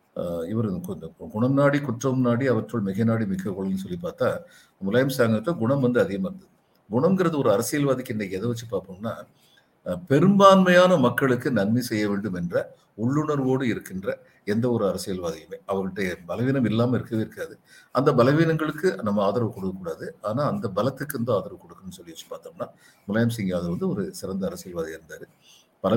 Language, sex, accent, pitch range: Tamil, male, native, 105-140 Hz